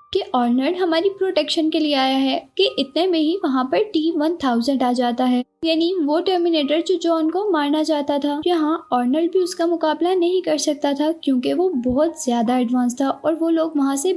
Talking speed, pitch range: 200 wpm, 270-330 Hz